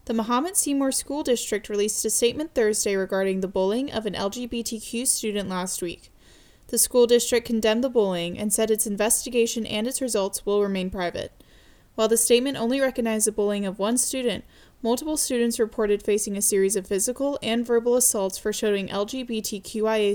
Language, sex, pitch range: English, female, 205-240 Hz